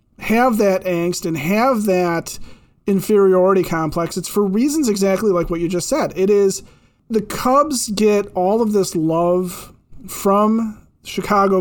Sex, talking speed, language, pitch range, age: male, 145 wpm, English, 170-225 Hz, 30-49